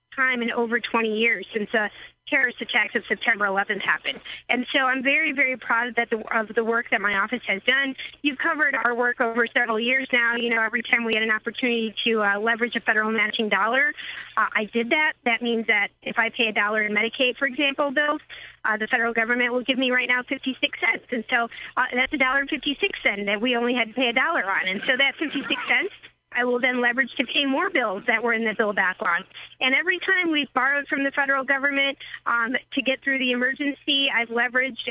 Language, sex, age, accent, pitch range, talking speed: English, female, 40-59, American, 225-265 Hz, 230 wpm